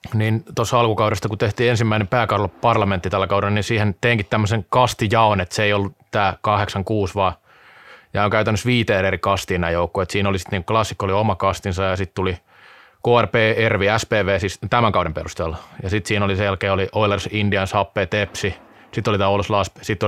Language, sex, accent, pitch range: Finnish, male, native, 100-110 Hz